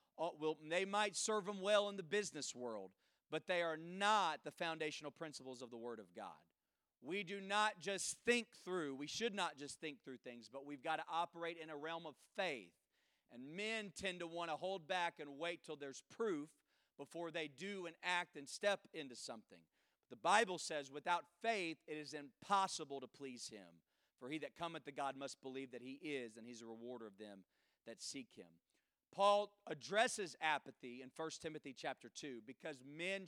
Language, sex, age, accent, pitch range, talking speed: English, male, 40-59, American, 130-175 Hz, 195 wpm